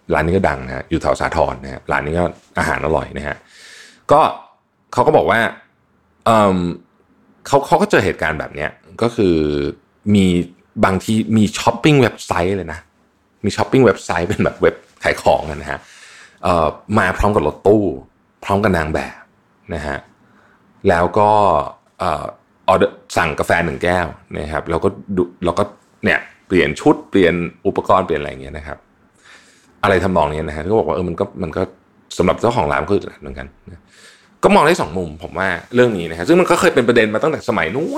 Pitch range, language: 80-105 Hz, Thai